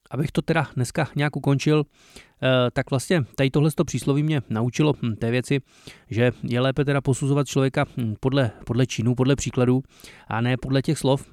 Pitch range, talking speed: 120-140 Hz, 160 wpm